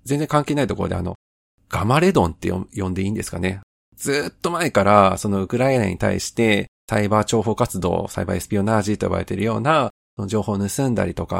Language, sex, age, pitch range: Japanese, male, 40-59, 95-120 Hz